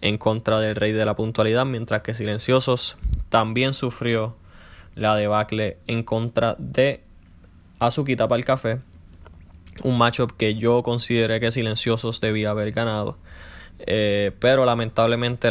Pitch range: 105-120 Hz